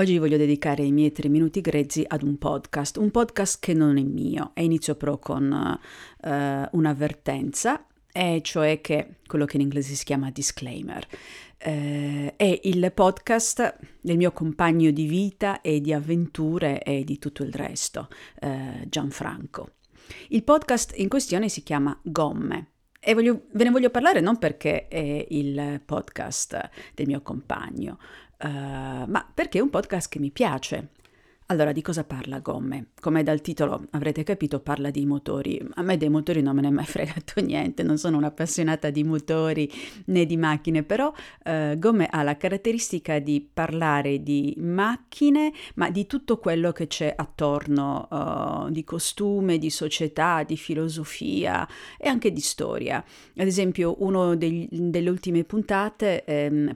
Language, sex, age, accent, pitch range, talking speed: Italian, female, 50-69, native, 145-185 Hz, 155 wpm